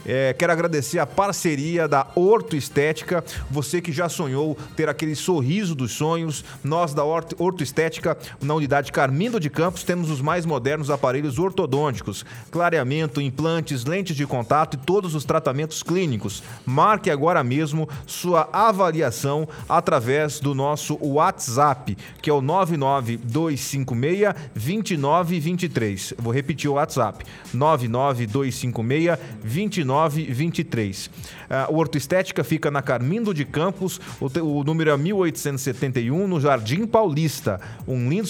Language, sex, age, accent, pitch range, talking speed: Portuguese, male, 30-49, Brazilian, 135-175 Hz, 125 wpm